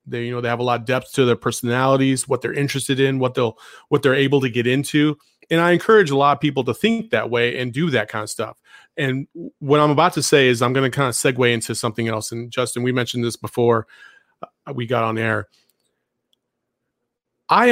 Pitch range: 120-155 Hz